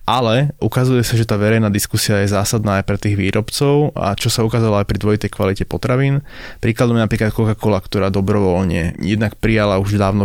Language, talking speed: Slovak, 185 wpm